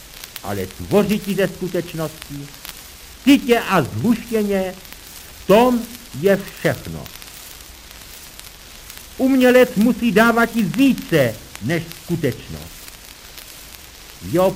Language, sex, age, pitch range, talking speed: Czech, male, 60-79, 145-210 Hz, 80 wpm